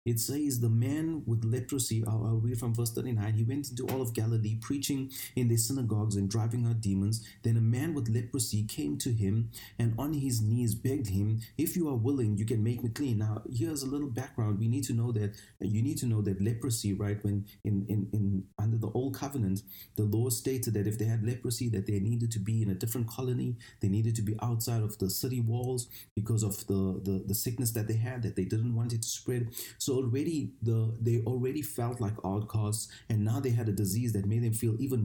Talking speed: 230 wpm